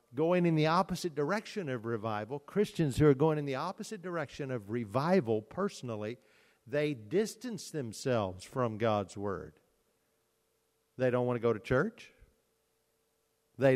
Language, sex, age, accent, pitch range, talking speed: English, male, 50-69, American, 120-175 Hz, 140 wpm